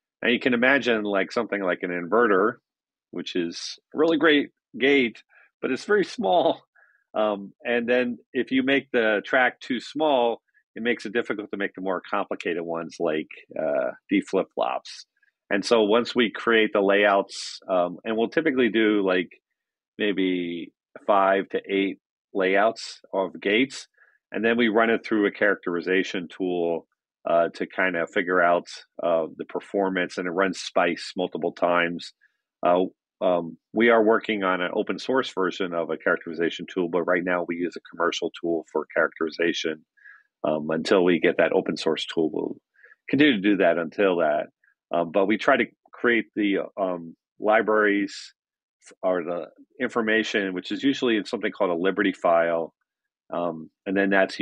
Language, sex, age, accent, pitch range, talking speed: English, male, 40-59, American, 90-115 Hz, 170 wpm